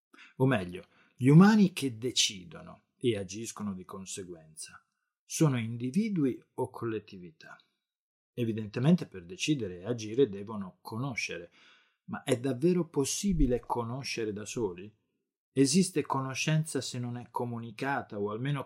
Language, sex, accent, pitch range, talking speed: Italian, male, native, 105-140 Hz, 115 wpm